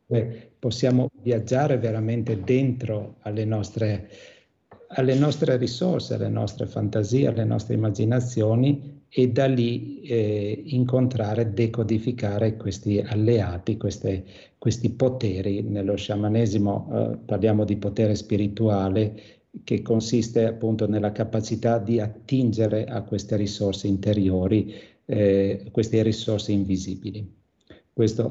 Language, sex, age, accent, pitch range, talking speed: Italian, male, 50-69, native, 105-120 Hz, 100 wpm